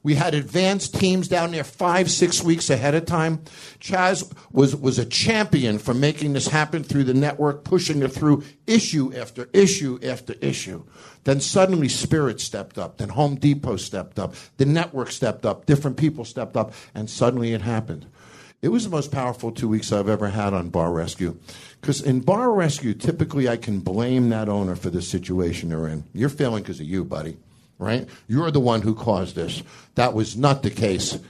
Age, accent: 60-79, American